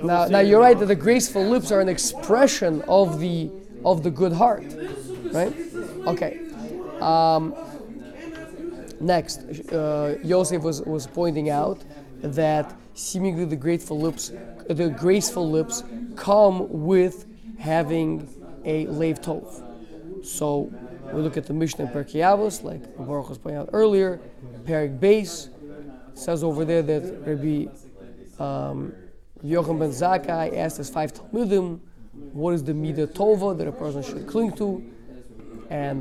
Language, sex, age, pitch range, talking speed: English, male, 20-39, 145-195 Hz, 135 wpm